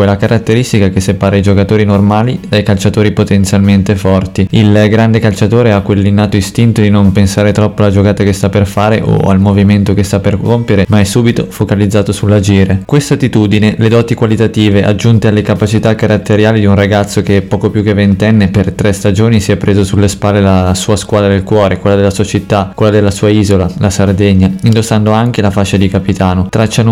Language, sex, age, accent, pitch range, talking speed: Italian, male, 20-39, native, 100-110 Hz, 190 wpm